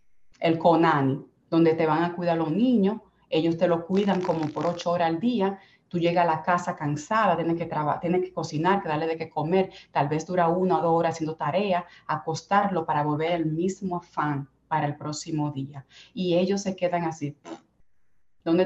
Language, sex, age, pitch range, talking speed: Spanish, female, 30-49, 160-195 Hz, 195 wpm